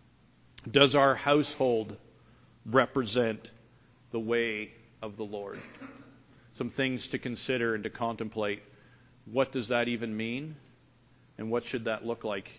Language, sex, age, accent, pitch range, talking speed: English, male, 40-59, American, 120-145 Hz, 130 wpm